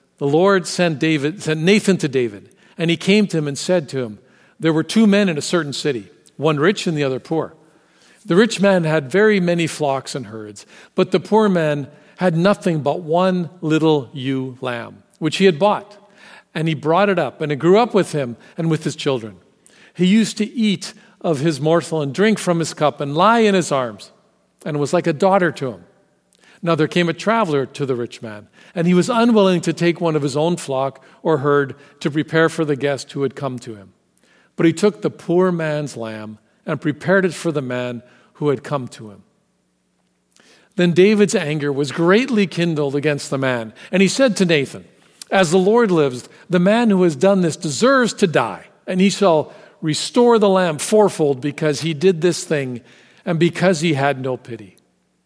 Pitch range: 140-190 Hz